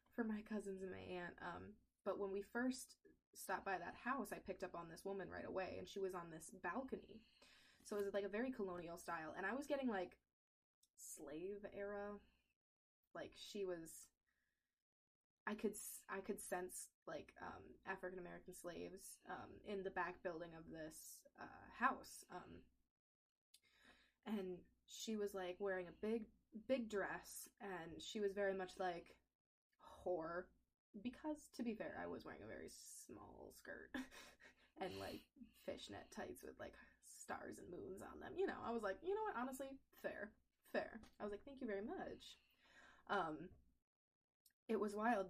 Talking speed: 165 wpm